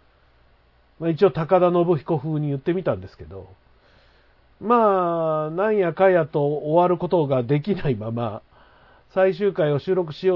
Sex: male